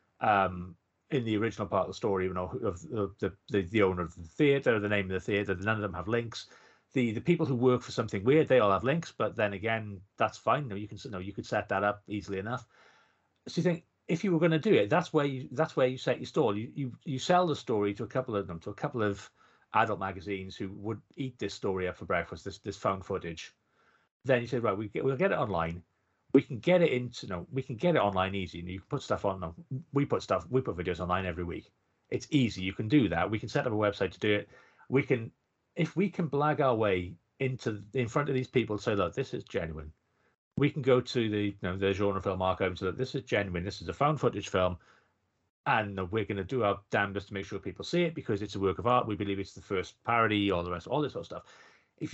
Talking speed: 270 wpm